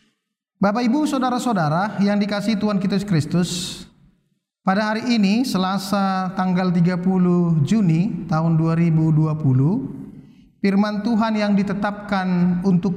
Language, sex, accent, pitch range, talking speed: Indonesian, male, native, 165-205 Hz, 105 wpm